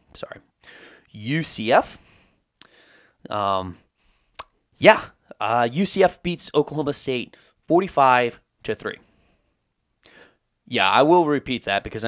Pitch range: 110-170 Hz